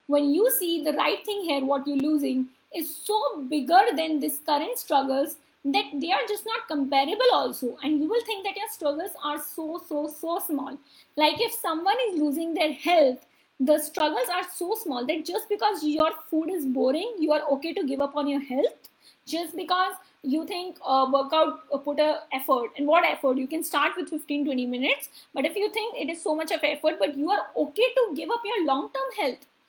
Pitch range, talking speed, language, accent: 280-340 Hz, 210 wpm, English, Indian